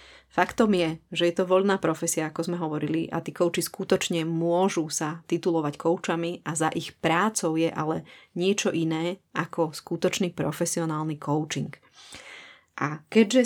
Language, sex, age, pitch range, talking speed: Slovak, female, 20-39, 160-180 Hz, 145 wpm